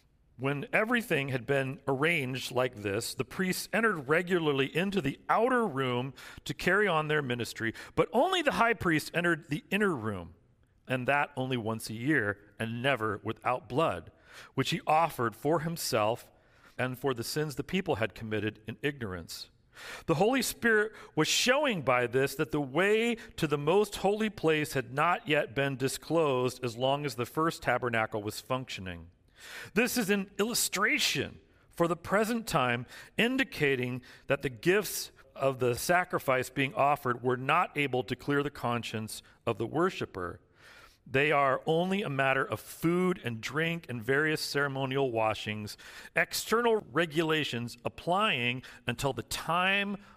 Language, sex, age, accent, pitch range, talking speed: English, male, 40-59, American, 120-170 Hz, 155 wpm